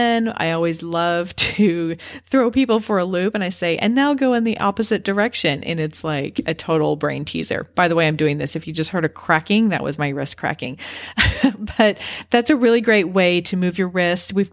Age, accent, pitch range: 40-59, American, 160-210 Hz